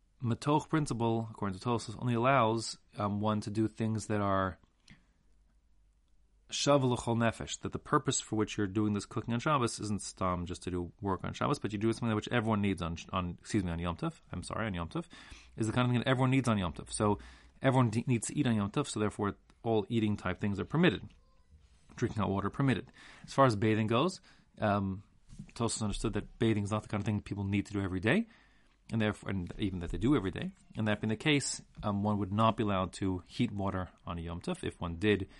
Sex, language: male, English